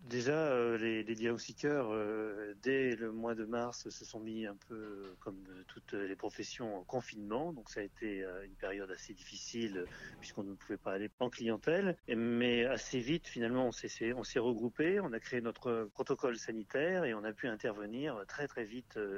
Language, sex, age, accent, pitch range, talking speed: French, male, 30-49, French, 100-120 Hz, 180 wpm